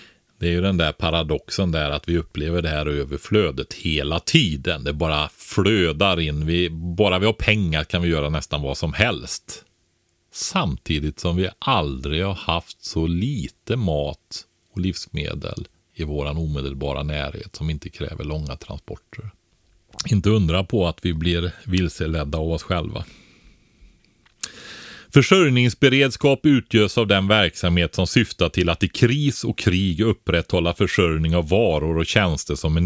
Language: Swedish